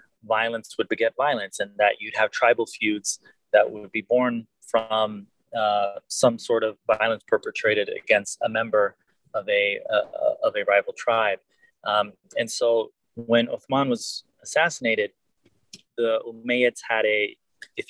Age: 20-39